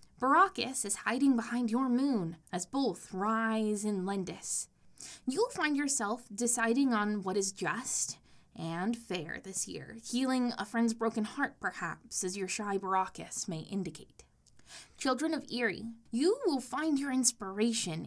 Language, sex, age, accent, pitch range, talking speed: English, female, 20-39, American, 205-255 Hz, 145 wpm